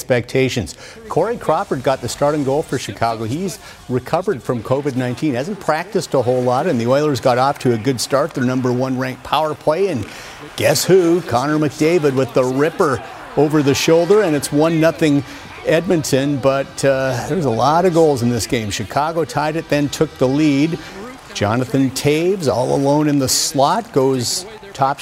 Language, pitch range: English, 125-155 Hz